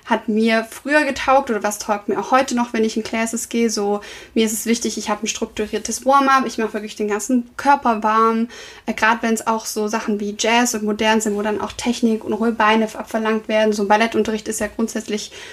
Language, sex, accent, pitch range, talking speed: German, female, German, 215-235 Hz, 230 wpm